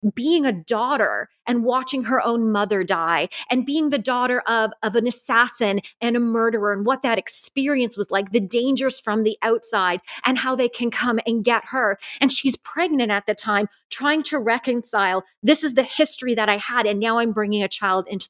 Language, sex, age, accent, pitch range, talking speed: English, female, 30-49, American, 210-260 Hz, 205 wpm